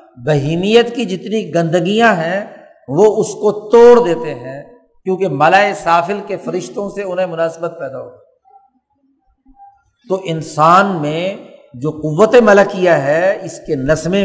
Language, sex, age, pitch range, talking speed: Urdu, male, 50-69, 165-205 Hz, 95 wpm